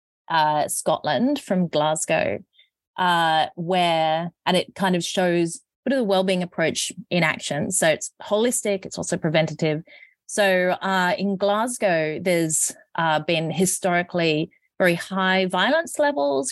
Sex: female